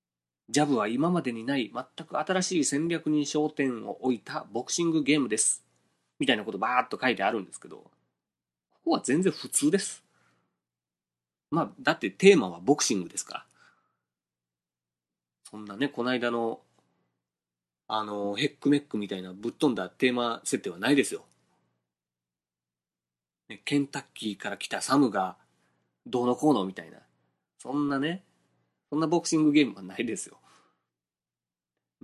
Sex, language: male, Japanese